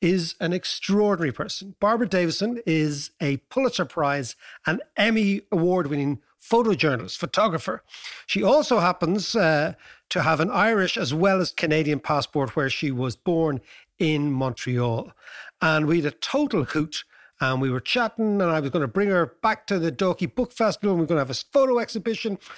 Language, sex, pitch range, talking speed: English, male, 145-210 Hz, 180 wpm